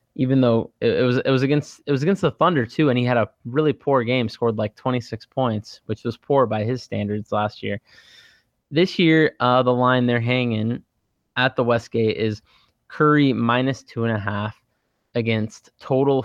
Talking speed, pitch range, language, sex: 190 wpm, 110-140 Hz, English, male